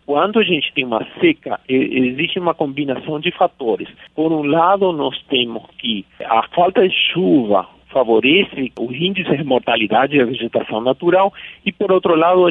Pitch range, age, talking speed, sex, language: 135-175 Hz, 50-69, 165 wpm, male, Portuguese